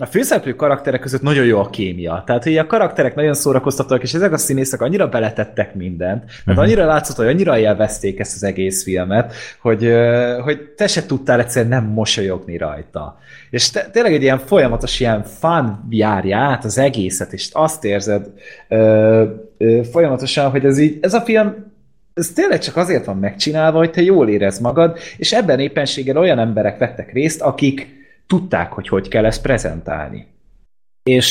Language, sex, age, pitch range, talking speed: Hungarian, male, 20-39, 110-140 Hz, 170 wpm